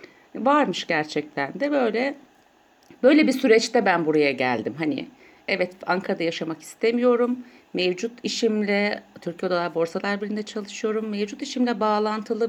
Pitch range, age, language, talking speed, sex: 170-260 Hz, 60-79, Turkish, 115 wpm, female